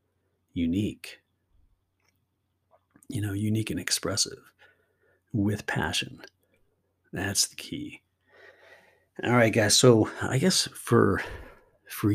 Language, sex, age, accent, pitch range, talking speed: English, male, 50-69, American, 95-110 Hz, 95 wpm